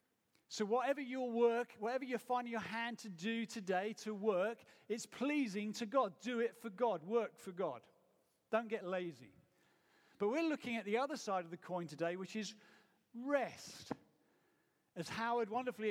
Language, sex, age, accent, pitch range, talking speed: English, male, 40-59, British, 170-225 Hz, 170 wpm